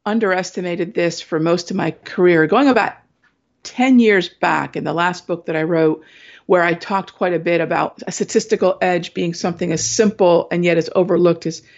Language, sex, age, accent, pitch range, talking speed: English, female, 50-69, American, 160-190 Hz, 195 wpm